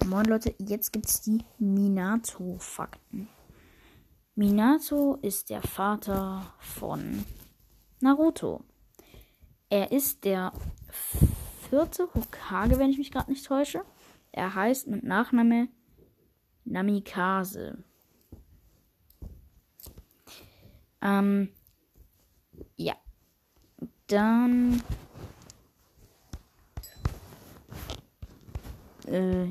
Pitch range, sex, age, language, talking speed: 185-235 Hz, female, 20-39, German, 65 wpm